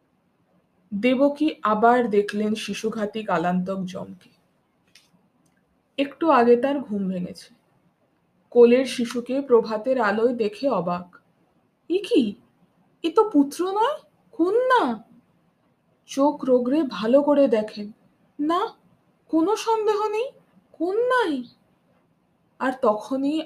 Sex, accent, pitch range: female, native, 220-305 Hz